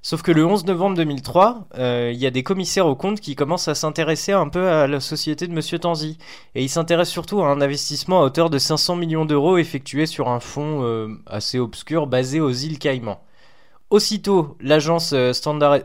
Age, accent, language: 20-39, French, French